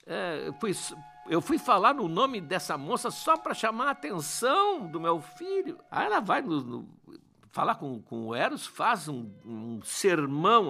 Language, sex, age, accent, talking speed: Portuguese, male, 60-79, Brazilian, 150 wpm